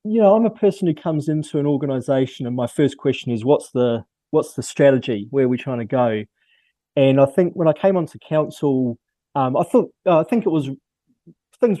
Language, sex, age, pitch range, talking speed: English, male, 30-49, 120-140 Hz, 215 wpm